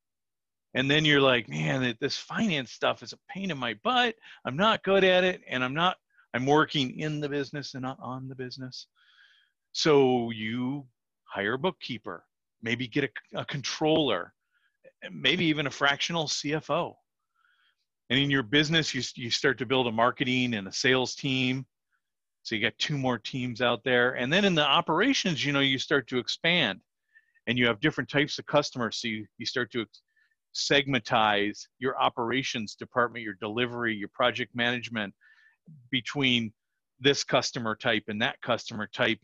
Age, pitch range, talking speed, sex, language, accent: 40-59, 120-150 Hz, 170 wpm, male, English, American